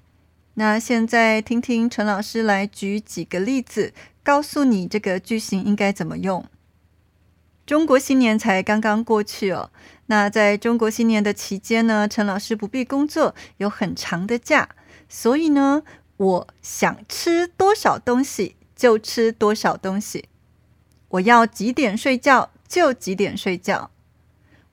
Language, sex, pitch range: Chinese, female, 190-245 Hz